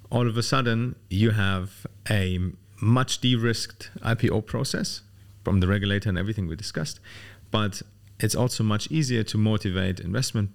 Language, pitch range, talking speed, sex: Arabic, 100-115 Hz, 150 wpm, male